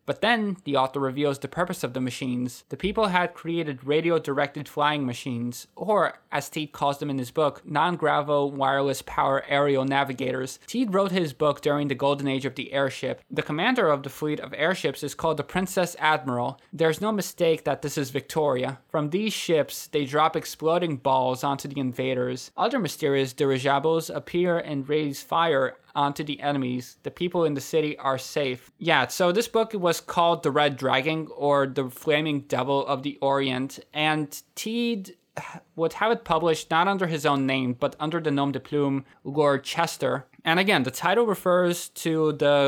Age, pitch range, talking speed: 20-39, 135-165 Hz, 180 wpm